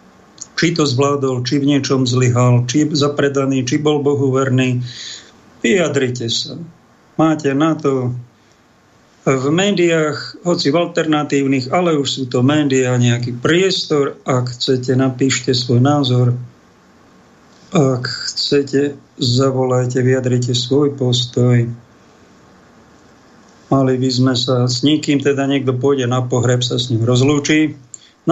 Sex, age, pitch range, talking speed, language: male, 50-69, 125-145 Hz, 120 wpm, Slovak